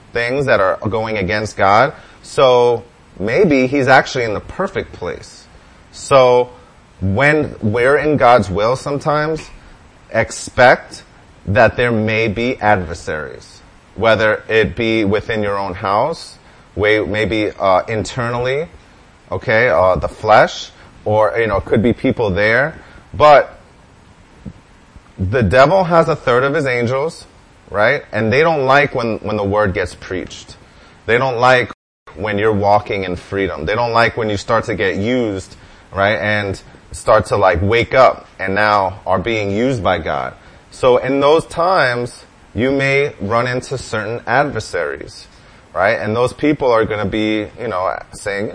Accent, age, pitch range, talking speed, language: American, 30-49, 100-125 Hz, 150 wpm, English